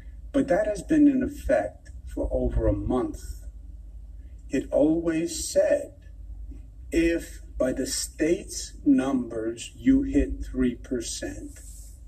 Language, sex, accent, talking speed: English, male, American, 105 wpm